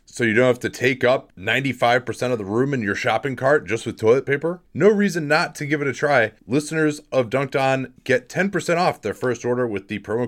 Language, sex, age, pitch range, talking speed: English, male, 30-49, 95-145 Hz, 235 wpm